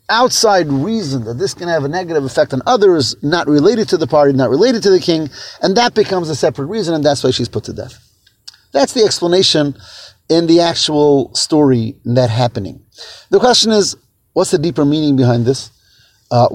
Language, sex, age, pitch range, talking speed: English, male, 30-49, 120-160 Hz, 190 wpm